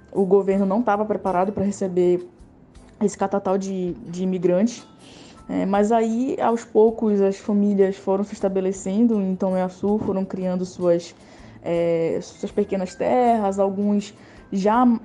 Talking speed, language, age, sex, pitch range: 135 wpm, Portuguese, 10-29, female, 190-235 Hz